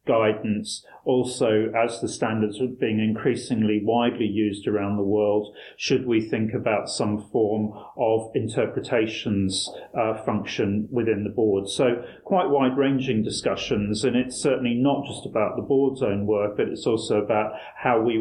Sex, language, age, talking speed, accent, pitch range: male, English, 40-59, 150 wpm, British, 105-125 Hz